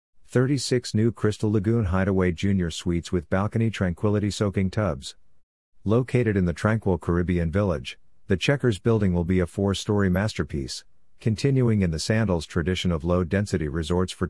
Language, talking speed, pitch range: English, 145 wpm, 90-105 Hz